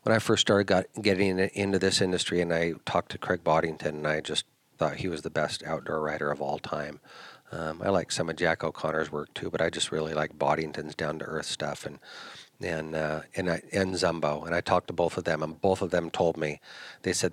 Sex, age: male, 40-59